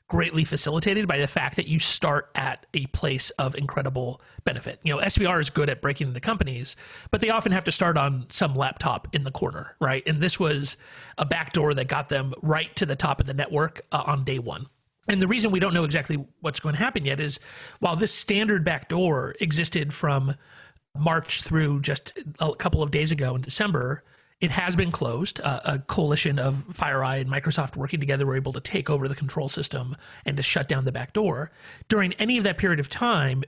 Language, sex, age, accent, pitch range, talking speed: English, male, 40-59, American, 140-175 Hz, 215 wpm